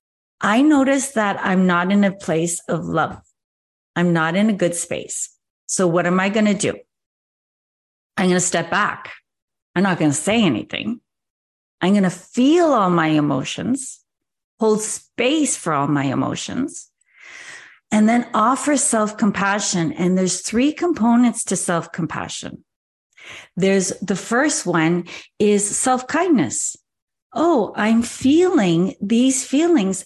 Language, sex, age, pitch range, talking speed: English, female, 40-59, 185-265 Hz, 135 wpm